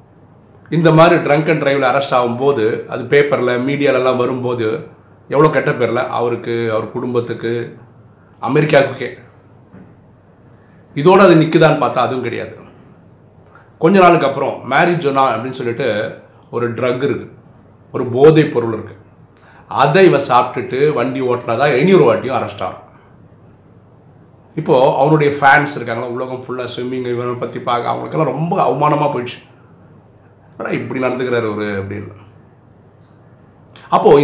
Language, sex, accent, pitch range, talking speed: Tamil, male, native, 115-145 Hz, 105 wpm